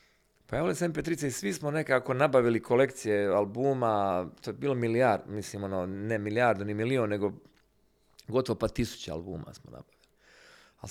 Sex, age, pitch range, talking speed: male, 40-59, 110-145 Hz, 170 wpm